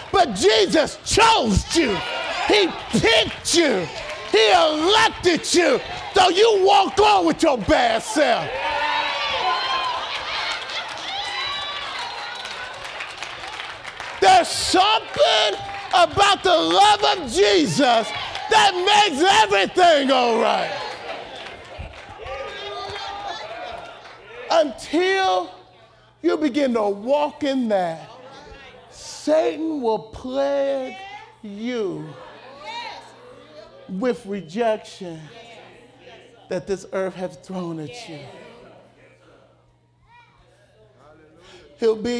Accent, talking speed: American, 75 wpm